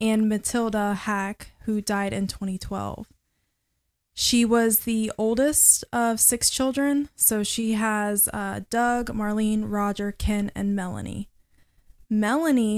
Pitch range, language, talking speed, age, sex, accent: 200-235 Hz, English, 115 wpm, 20-39, female, American